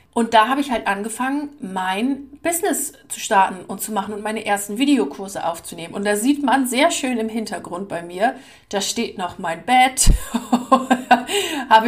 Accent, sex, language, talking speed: German, female, German, 170 wpm